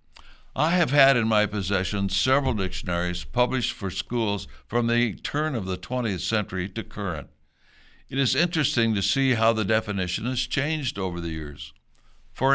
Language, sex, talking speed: English, male, 165 wpm